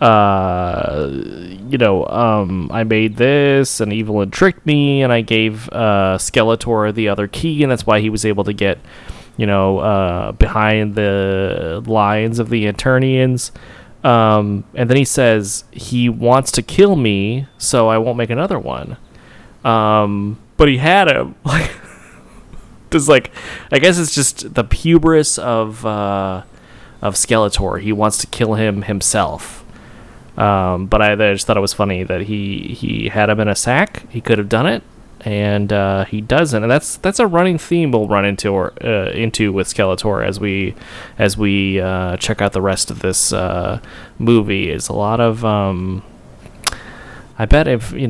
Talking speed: 170 wpm